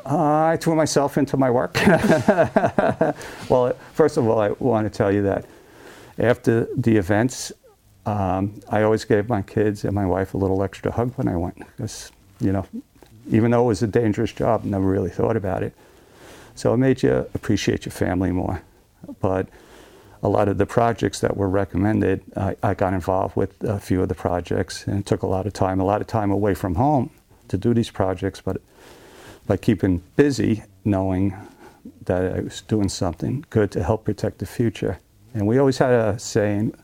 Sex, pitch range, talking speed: male, 95-115 Hz, 195 wpm